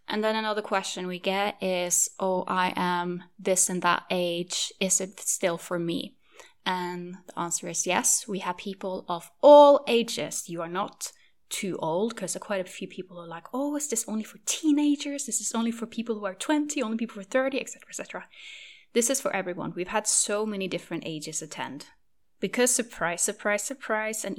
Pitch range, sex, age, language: 170-215 Hz, female, 10-29, English